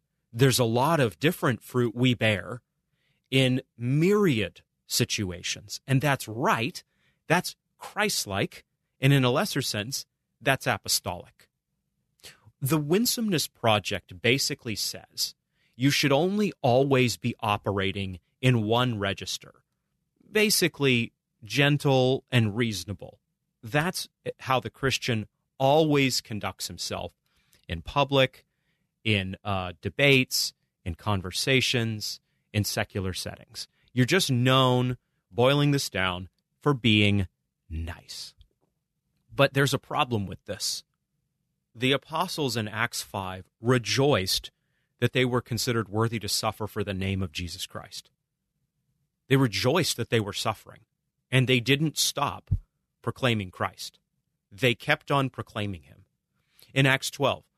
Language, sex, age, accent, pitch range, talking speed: English, male, 30-49, American, 105-145 Hz, 120 wpm